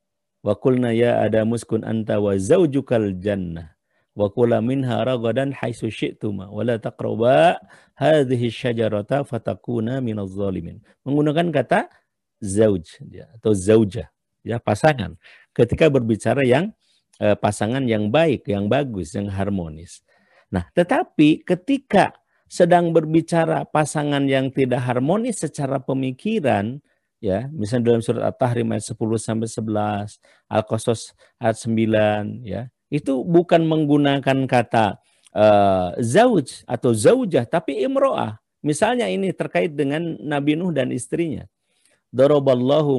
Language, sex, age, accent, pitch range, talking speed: Indonesian, male, 50-69, native, 110-150 Hz, 115 wpm